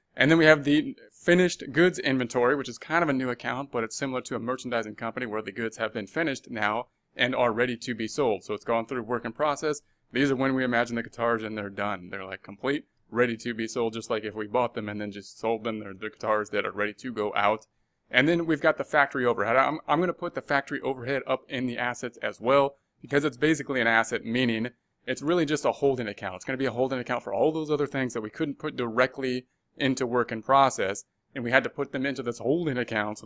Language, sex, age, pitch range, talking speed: English, male, 20-39, 115-140 Hz, 260 wpm